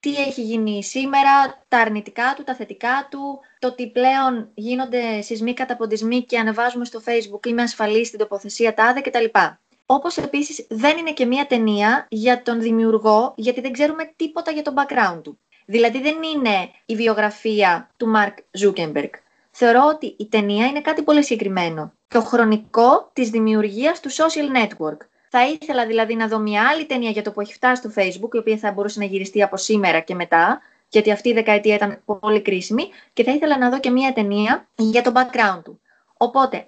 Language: Greek